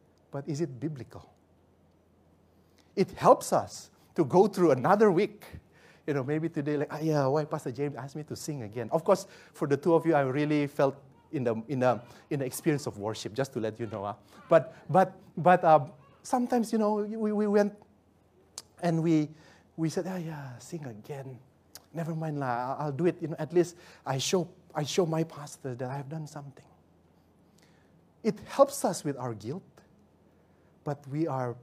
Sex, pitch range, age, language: male, 110-175 Hz, 30-49, English